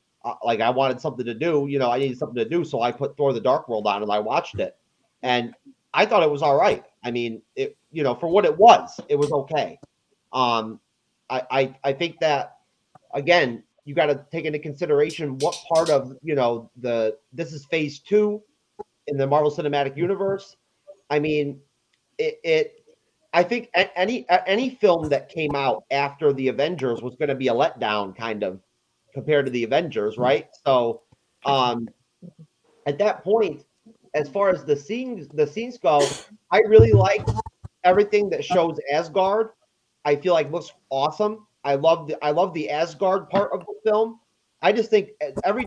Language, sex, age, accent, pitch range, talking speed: English, male, 30-49, American, 135-195 Hz, 185 wpm